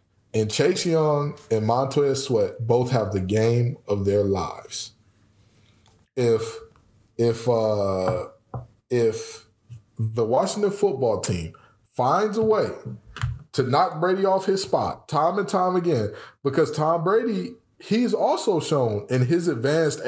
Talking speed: 130 wpm